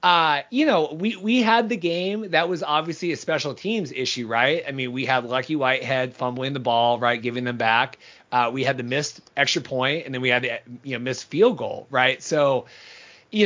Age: 30-49